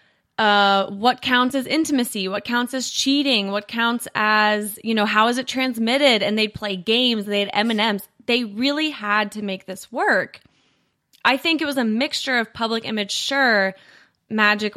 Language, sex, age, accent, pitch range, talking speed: English, female, 20-39, American, 195-245 Hz, 175 wpm